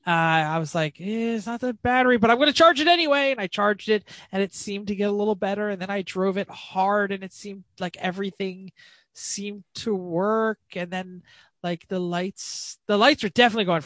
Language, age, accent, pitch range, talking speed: English, 20-39, American, 165-210 Hz, 225 wpm